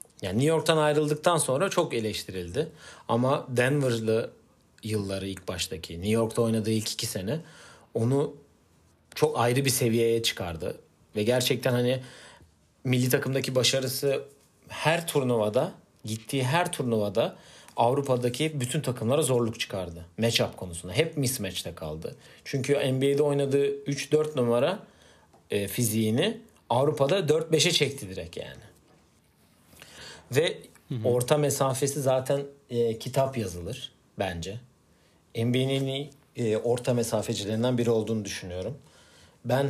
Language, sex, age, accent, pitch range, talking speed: Turkish, male, 40-59, native, 110-140 Hz, 110 wpm